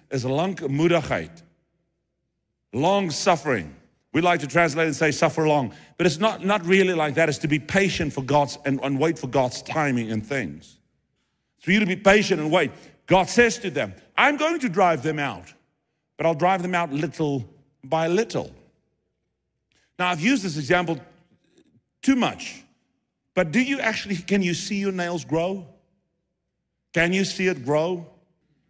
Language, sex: English, male